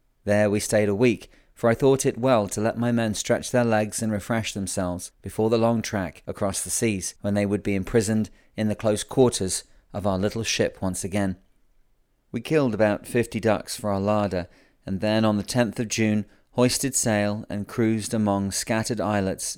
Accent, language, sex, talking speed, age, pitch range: British, English, male, 195 wpm, 40-59, 100-115 Hz